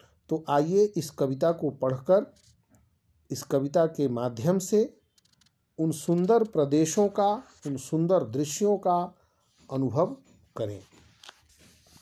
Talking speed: 105 wpm